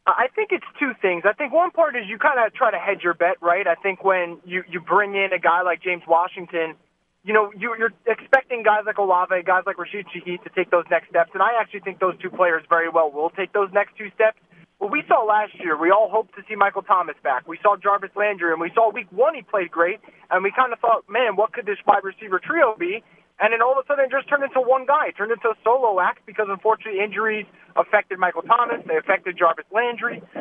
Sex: male